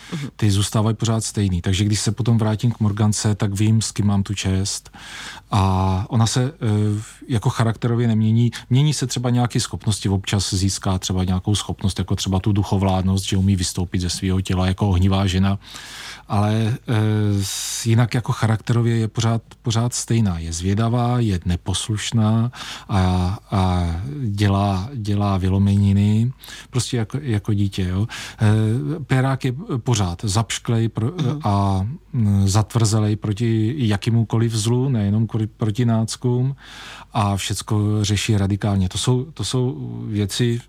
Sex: male